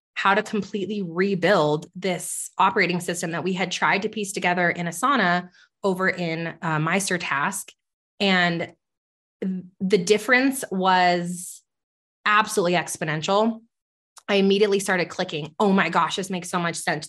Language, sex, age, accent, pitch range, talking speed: English, female, 20-39, American, 175-215 Hz, 135 wpm